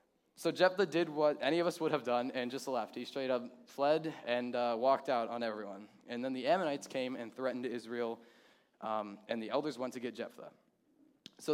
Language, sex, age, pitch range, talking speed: English, male, 10-29, 120-145 Hz, 210 wpm